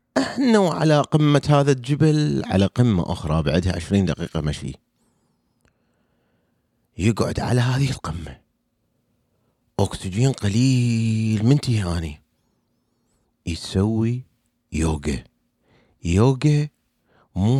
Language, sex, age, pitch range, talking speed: Arabic, male, 40-59, 90-130 Hz, 80 wpm